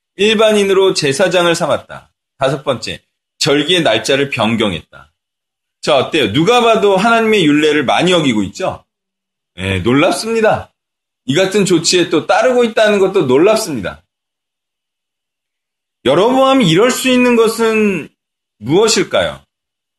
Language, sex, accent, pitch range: Korean, male, native, 140-185 Hz